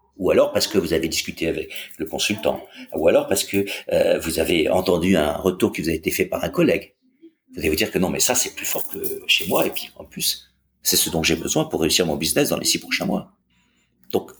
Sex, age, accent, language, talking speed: male, 50-69, French, French, 255 wpm